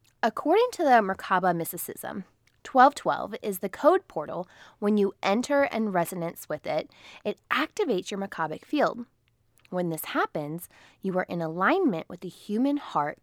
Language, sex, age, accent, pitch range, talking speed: English, female, 20-39, American, 165-220 Hz, 155 wpm